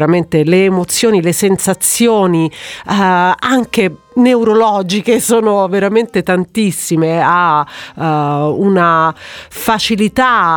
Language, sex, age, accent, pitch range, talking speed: Italian, female, 40-59, native, 165-215 Hz, 80 wpm